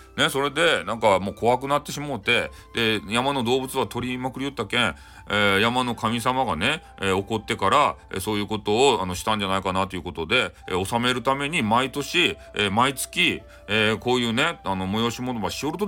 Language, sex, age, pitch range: Japanese, male, 40-59, 100-140 Hz